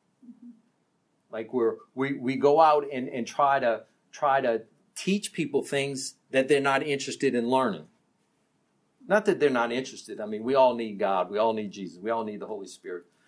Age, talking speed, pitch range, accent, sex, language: 50-69, 190 wpm, 125-180 Hz, American, male, English